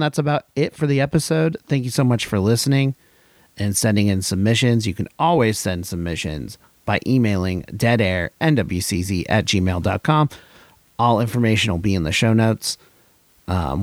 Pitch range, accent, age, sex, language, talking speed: 100-120 Hz, American, 30-49, male, English, 150 wpm